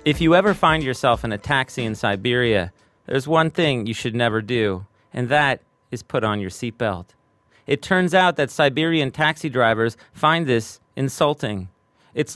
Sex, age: male, 30-49